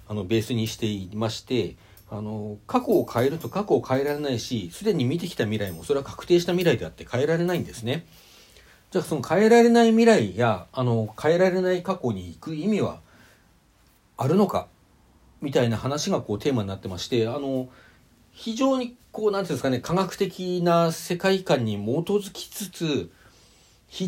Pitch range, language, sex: 110-180 Hz, Japanese, male